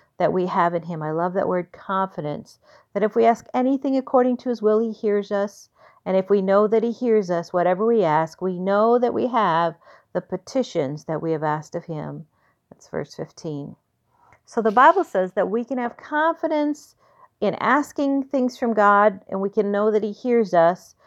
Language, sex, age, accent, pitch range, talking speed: English, female, 40-59, American, 175-225 Hz, 200 wpm